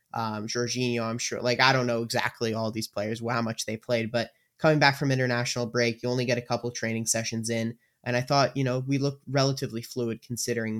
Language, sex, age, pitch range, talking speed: English, male, 20-39, 115-140 Hz, 220 wpm